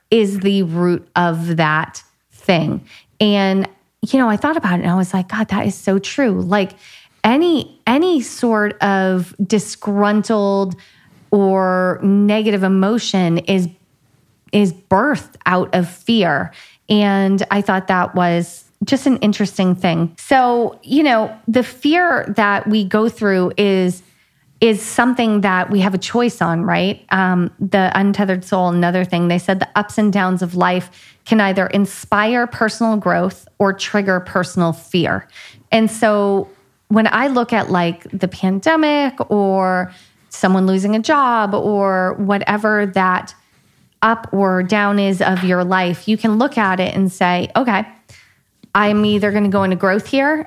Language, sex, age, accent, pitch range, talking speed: English, female, 30-49, American, 185-215 Hz, 150 wpm